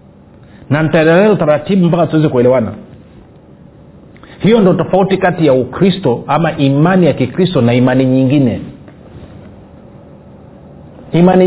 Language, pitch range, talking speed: Swahili, 135-180 Hz, 105 wpm